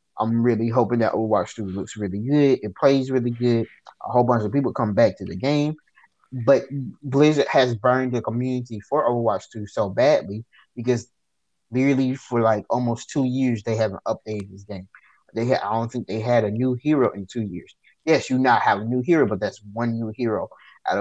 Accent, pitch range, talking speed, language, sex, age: American, 110-135 Hz, 205 wpm, English, male, 20-39